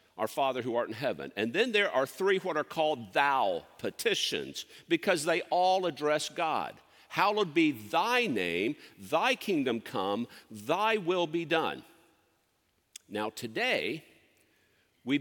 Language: English